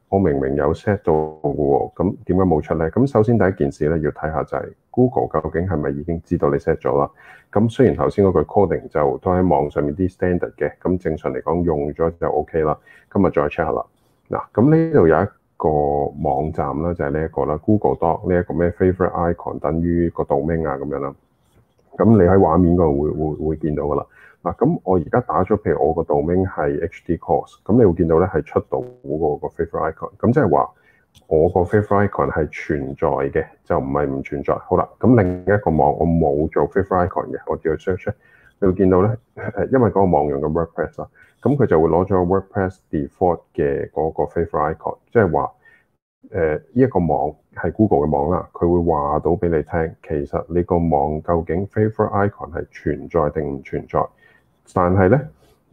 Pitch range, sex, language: 75-100 Hz, male, Chinese